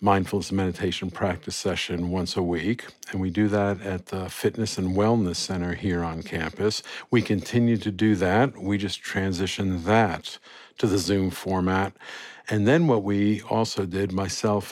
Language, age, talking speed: English, 50-69, 165 wpm